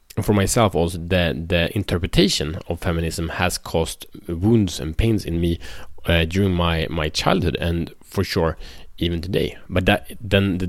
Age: 30-49